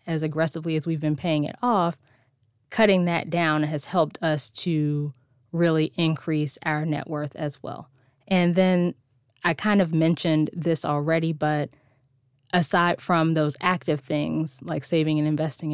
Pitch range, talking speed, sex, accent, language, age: 150-175 Hz, 155 wpm, female, American, English, 20-39